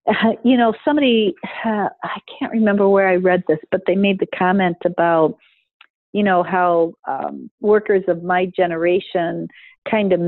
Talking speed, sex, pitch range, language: 165 wpm, female, 175-215 Hz, English